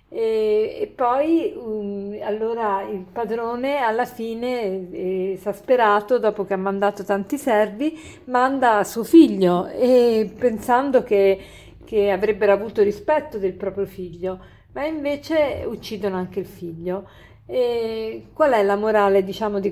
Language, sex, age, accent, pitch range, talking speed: Italian, female, 50-69, native, 195-240 Hz, 120 wpm